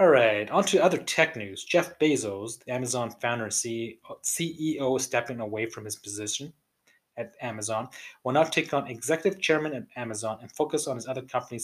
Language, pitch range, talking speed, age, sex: English, 115-155 Hz, 180 wpm, 20-39, male